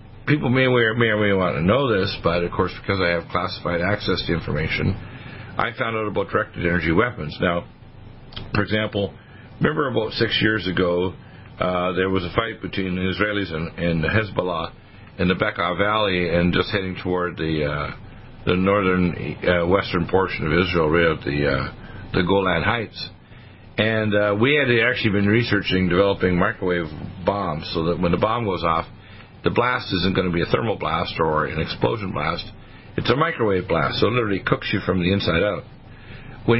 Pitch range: 90-110 Hz